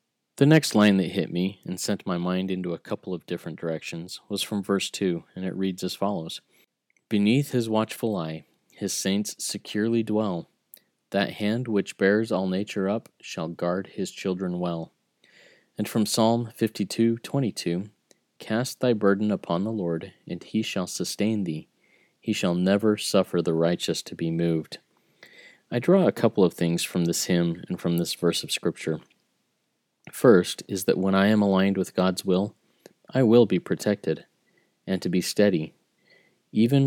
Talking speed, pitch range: 175 wpm, 90-105 Hz